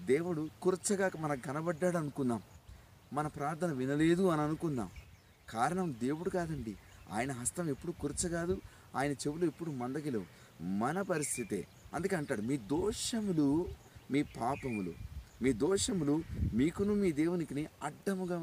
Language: Telugu